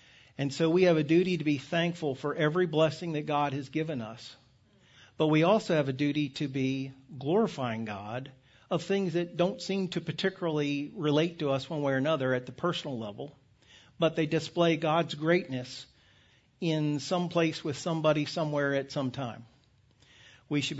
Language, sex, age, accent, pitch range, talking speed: English, male, 50-69, American, 130-160 Hz, 175 wpm